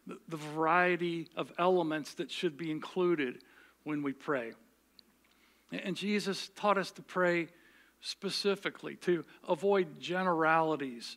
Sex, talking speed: male, 115 wpm